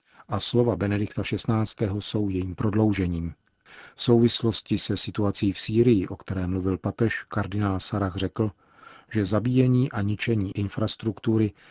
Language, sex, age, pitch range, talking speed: Czech, male, 40-59, 95-110 Hz, 130 wpm